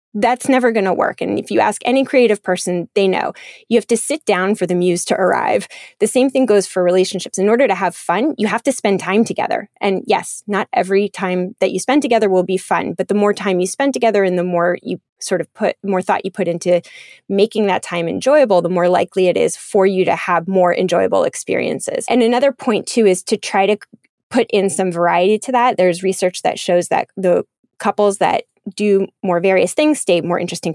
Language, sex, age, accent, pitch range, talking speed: English, female, 20-39, American, 180-225 Hz, 230 wpm